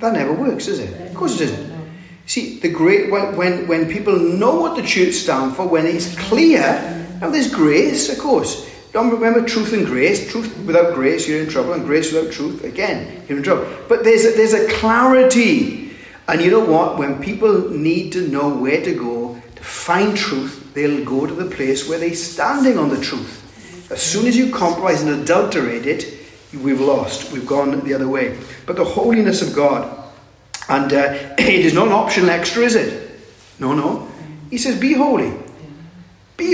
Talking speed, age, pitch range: 190 wpm, 40-59, 140-225 Hz